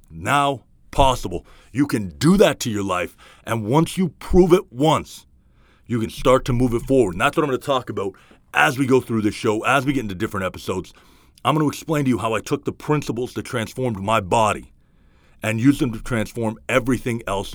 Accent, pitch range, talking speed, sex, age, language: American, 95-130 Hz, 220 wpm, male, 40-59, English